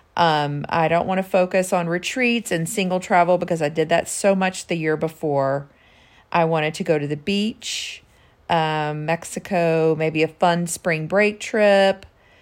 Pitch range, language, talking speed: 150-190 Hz, English, 170 wpm